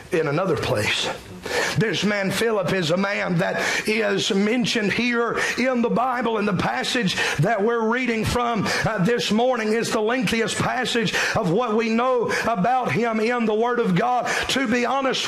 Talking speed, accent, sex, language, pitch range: 175 wpm, American, male, English, 205-245 Hz